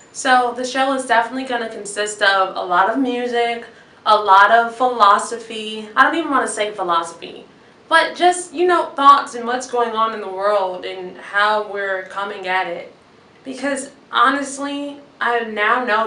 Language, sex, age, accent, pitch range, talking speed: English, female, 20-39, American, 190-250 Hz, 175 wpm